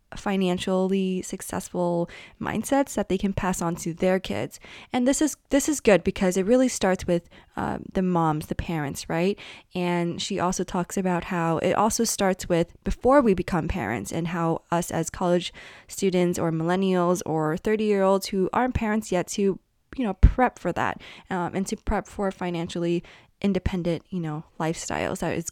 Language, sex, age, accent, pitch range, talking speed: English, female, 20-39, American, 175-210 Hz, 180 wpm